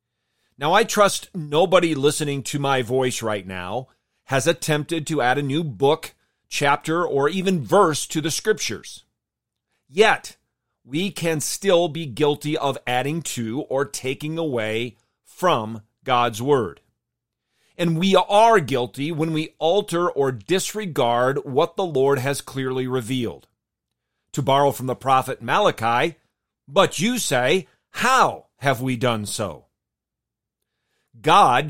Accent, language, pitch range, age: American, English, 120-170 Hz, 40-59